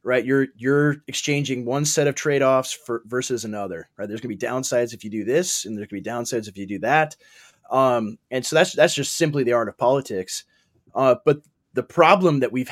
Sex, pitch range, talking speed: male, 120-150 Hz, 215 wpm